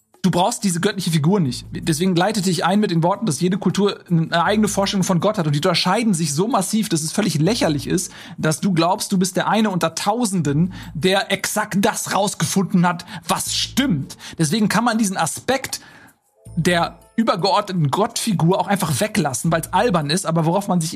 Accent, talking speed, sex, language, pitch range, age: German, 195 wpm, male, German, 165-205 Hz, 40-59